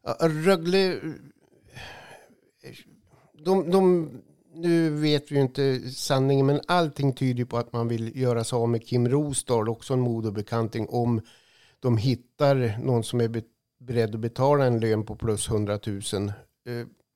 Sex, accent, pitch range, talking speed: male, native, 115-145 Hz, 130 wpm